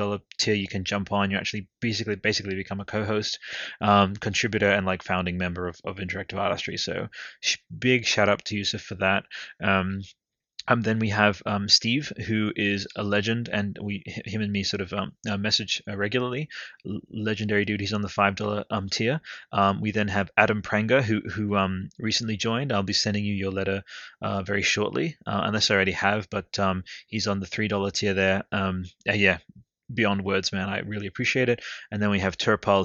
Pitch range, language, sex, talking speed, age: 95-110 Hz, English, male, 195 wpm, 20-39